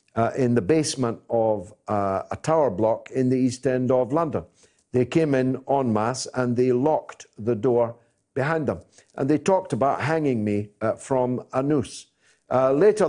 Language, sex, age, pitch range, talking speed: English, male, 60-79, 120-165 Hz, 180 wpm